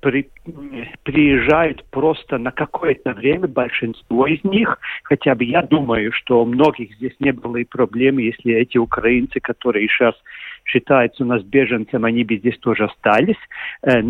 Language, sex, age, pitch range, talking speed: Russian, male, 50-69, 120-165 Hz, 145 wpm